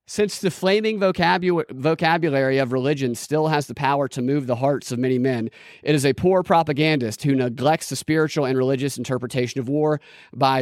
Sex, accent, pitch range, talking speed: male, American, 135-180 Hz, 180 wpm